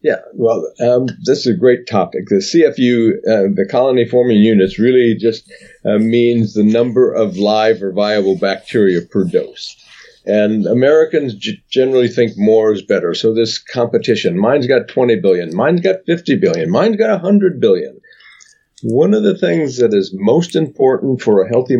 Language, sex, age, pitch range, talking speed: English, male, 50-69, 105-175 Hz, 170 wpm